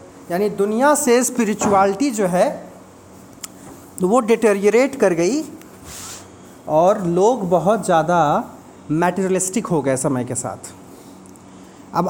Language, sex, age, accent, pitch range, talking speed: Hindi, male, 40-59, native, 150-215 Hz, 105 wpm